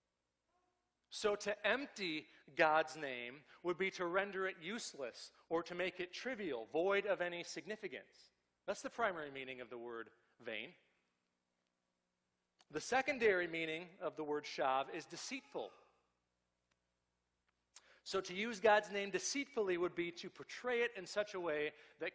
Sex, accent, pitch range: male, American, 120-200 Hz